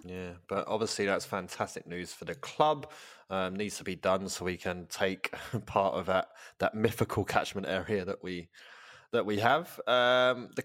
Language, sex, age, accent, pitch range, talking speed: English, male, 20-39, British, 90-120 Hz, 180 wpm